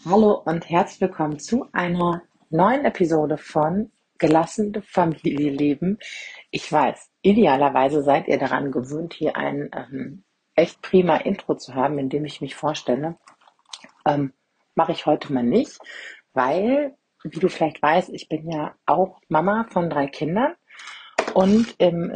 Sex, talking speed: female, 145 wpm